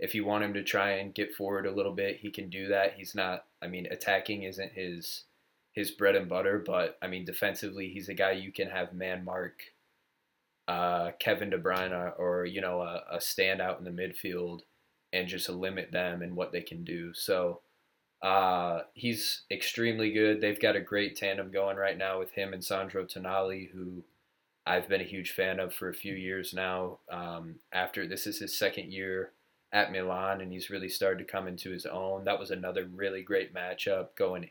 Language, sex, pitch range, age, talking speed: English, male, 90-100 Hz, 20-39, 200 wpm